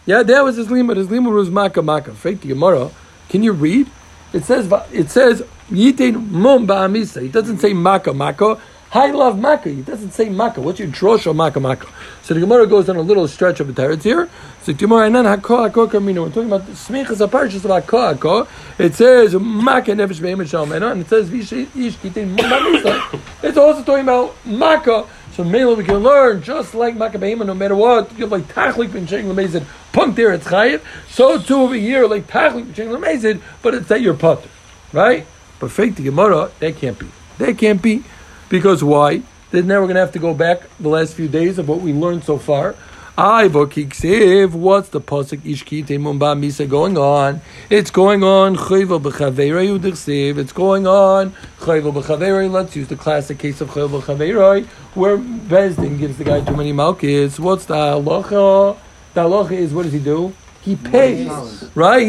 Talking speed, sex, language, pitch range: 165 wpm, male, English, 160-235 Hz